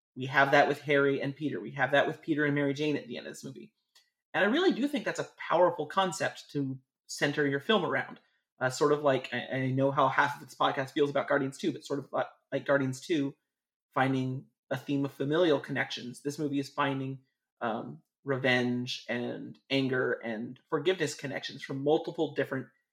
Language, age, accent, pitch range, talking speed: English, 30-49, American, 135-195 Hz, 200 wpm